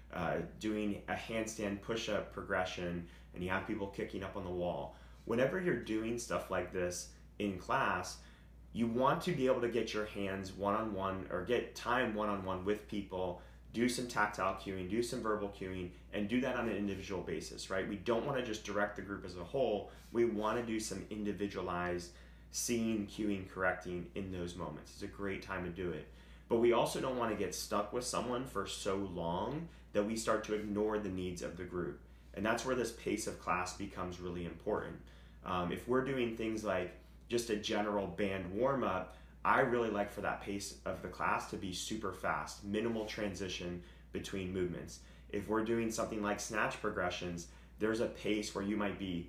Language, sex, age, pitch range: English, male, 30-49, 90-110 Hz